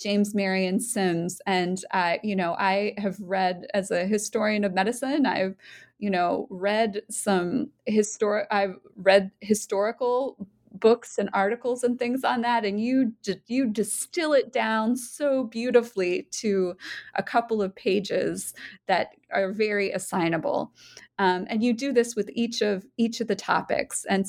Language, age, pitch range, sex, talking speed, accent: English, 20-39, 195-245 Hz, female, 155 wpm, American